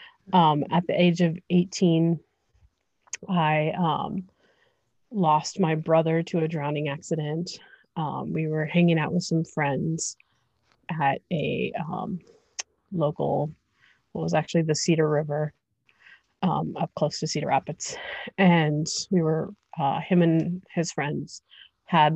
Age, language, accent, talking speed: 30-49, English, American, 130 wpm